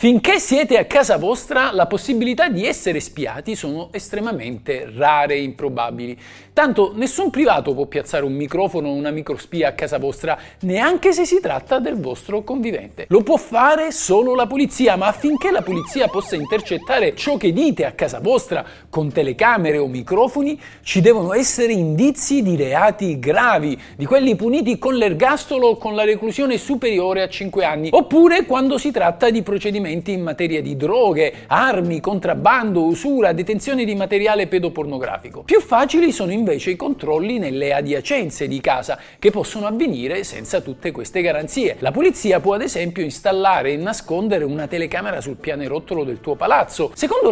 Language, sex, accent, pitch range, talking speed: Italian, male, native, 160-265 Hz, 160 wpm